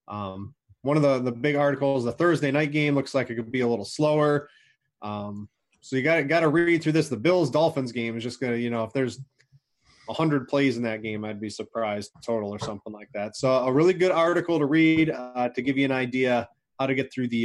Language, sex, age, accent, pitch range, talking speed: English, male, 20-39, American, 110-150 Hz, 235 wpm